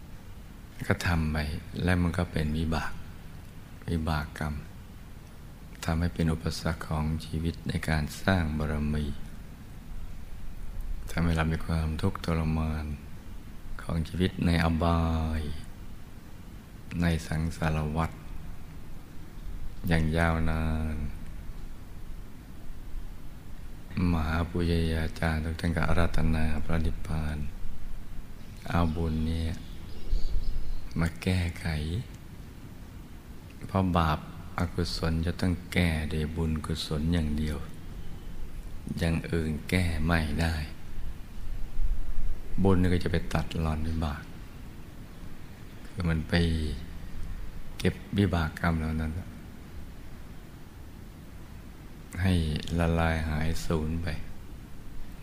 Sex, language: male, Thai